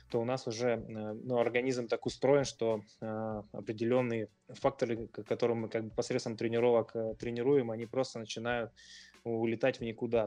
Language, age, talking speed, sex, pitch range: Russian, 20-39, 145 wpm, male, 110-125 Hz